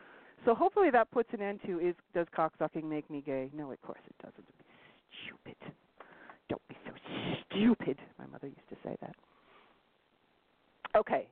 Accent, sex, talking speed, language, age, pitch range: American, female, 175 wpm, English, 40-59, 140-200 Hz